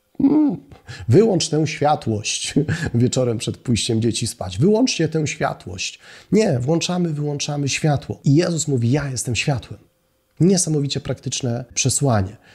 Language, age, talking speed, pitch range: Polish, 30-49, 115 wpm, 120-150 Hz